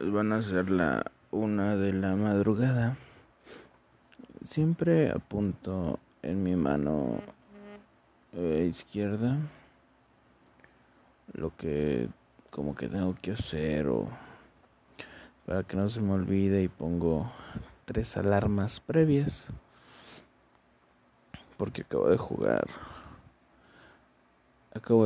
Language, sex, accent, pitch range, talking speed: Spanish, male, Mexican, 70-110 Hz, 90 wpm